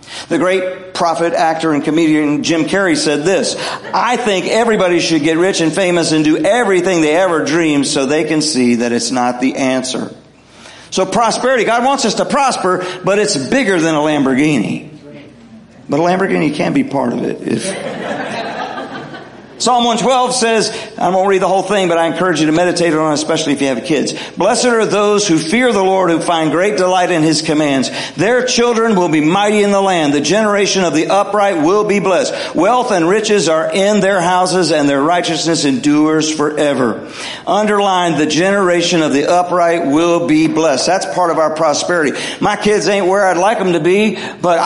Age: 50-69